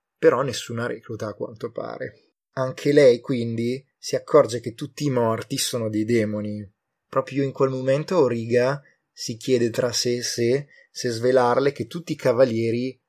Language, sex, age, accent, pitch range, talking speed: Italian, male, 20-39, native, 115-135 Hz, 160 wpm